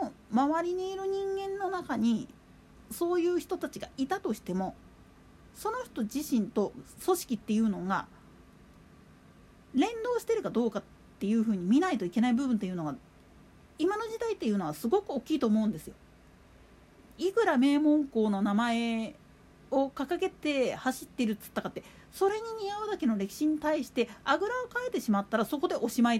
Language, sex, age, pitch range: Japanese, female, 40-59, 215-350 Hz